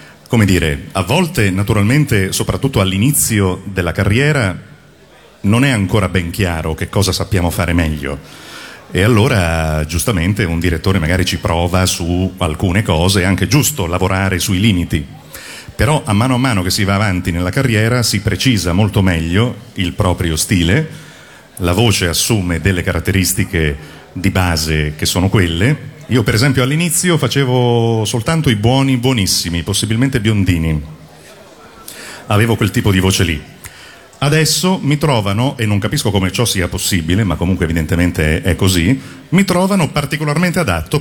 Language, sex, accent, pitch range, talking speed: Italian, male, native, 90-120 Hz, 145 wpm